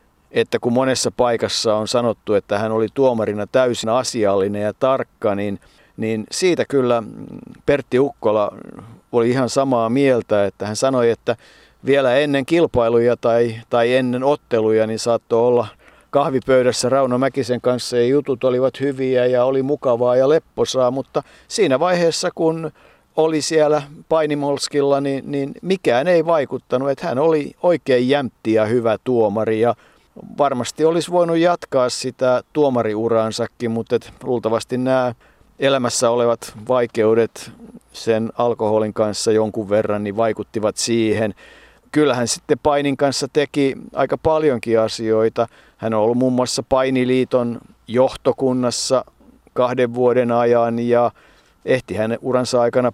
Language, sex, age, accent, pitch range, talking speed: Finnish, male, 50-69, native, 115-135 Hz, 130 wpm